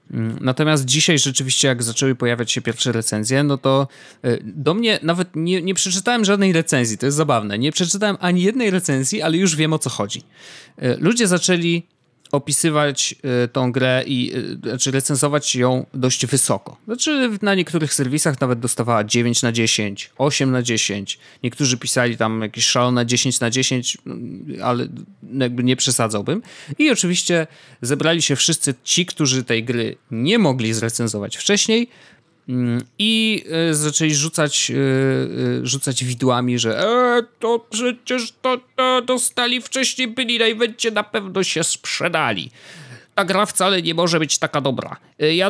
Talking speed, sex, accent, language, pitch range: 140 wpm, male, native, Polish, 125-185 Hz